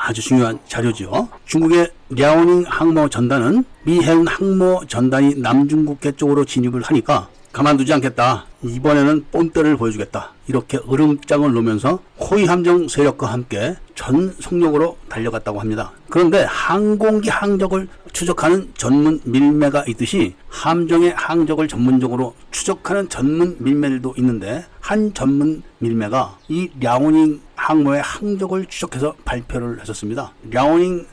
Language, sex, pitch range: Korean, male, 130-175 Hz